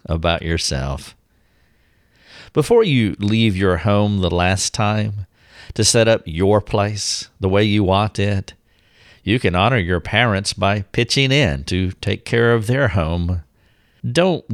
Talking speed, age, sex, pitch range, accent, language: 145 wpm, 50-69, male, 95-125 Hz, American, English